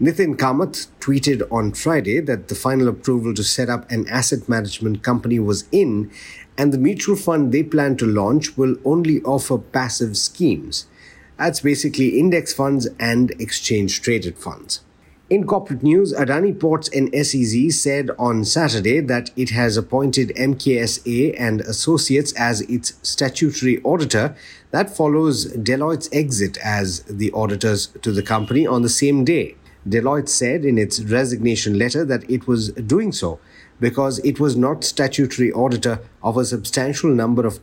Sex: male